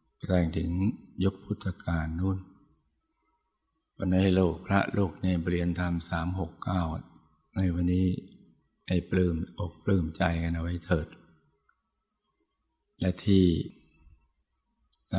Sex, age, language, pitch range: male, 60-79, Thai, 85-95 Hz